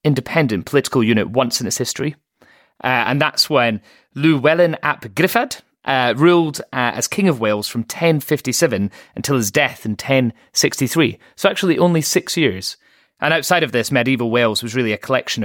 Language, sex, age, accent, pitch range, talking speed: English, male, 30-49, British, 105-150 Hz, 165 wpm